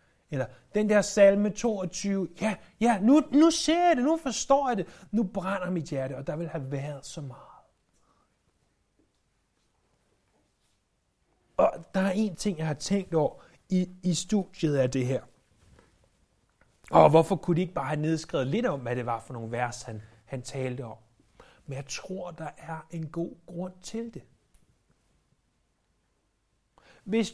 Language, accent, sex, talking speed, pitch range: Danish, native, male, 160 wpm, 135-185 Hz